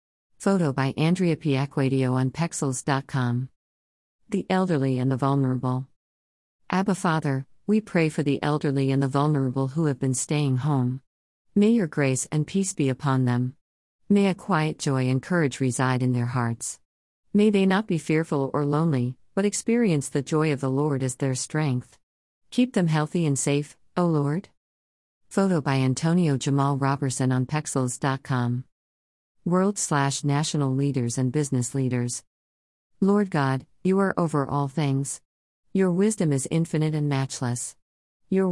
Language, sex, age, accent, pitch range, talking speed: English, female, 50-69, American, 130-175 Hz, 150 wpm